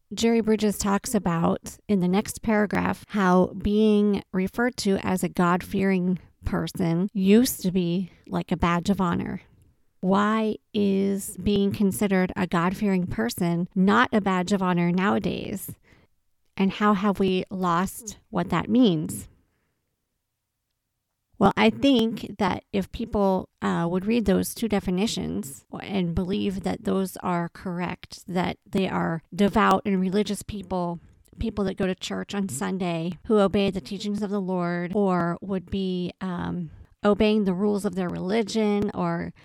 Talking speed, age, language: 145 wpm, 40-59, English